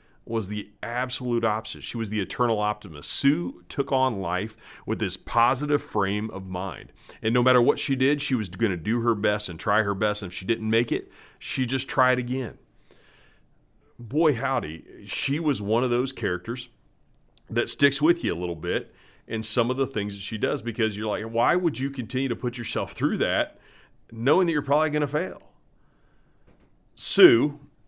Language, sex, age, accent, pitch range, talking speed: English, male, 40-59, American, 95-130 Hz, 190 wpm